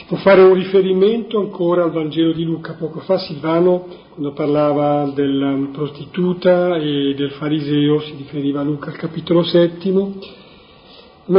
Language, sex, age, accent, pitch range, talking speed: Italian, male, 40-59, native, 155-185 Hz, 150 wpm